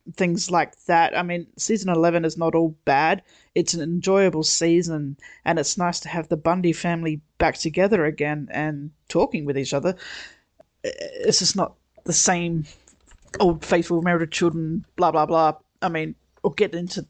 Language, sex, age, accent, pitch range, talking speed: English, female, 30-49, Australian, 155-180 Hz, 170 wpm